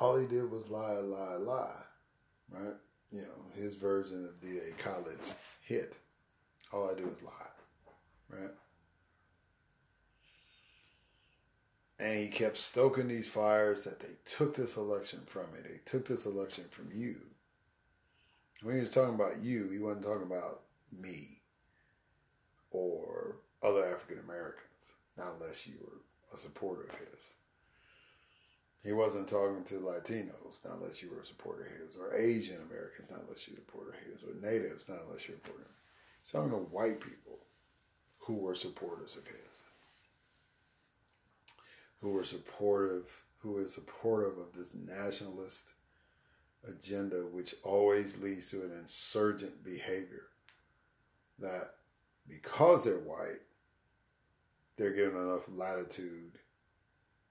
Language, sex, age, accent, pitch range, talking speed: English, male, 40-59, American, 90-110 Hz, 135 wpm